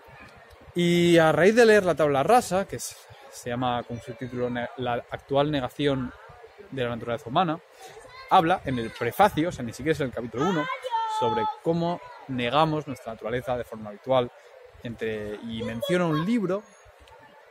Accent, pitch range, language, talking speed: Spanish, 110-150 Hz, Spanish, 160 wpm